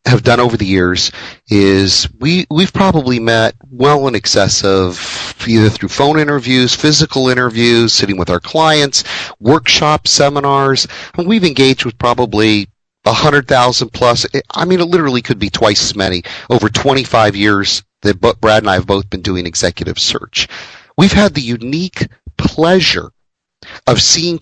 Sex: male